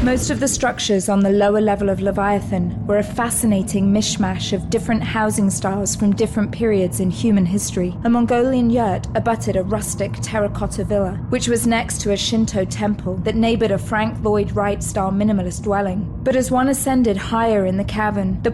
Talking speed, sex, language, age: 180 wpm, female, English, 30-49